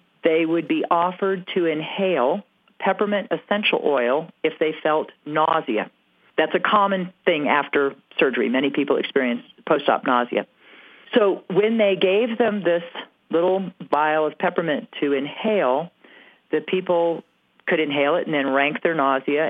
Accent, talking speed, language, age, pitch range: American, 140 wpm, English, 40-59, 145-195 Hz